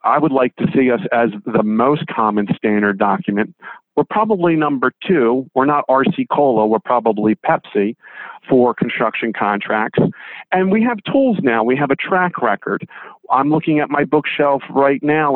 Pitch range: 120-155 Hz